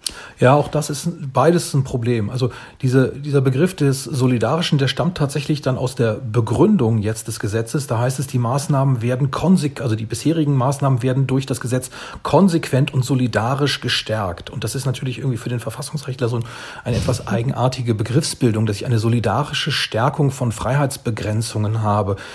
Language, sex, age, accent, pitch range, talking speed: German, male, 40-59, German, 120-145 Hz, 170 wpm